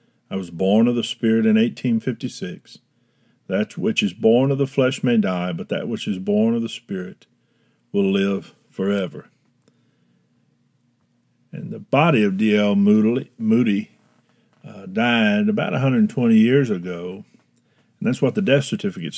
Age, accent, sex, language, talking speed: 50-69, American, male, English, 145 wpm